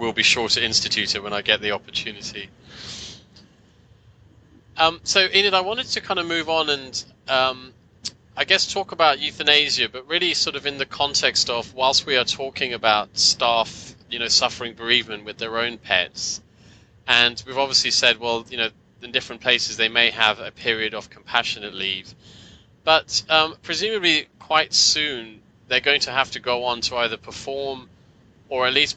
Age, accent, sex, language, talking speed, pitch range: 30-49, British, male, English, 180 wpm, 110-135 Hz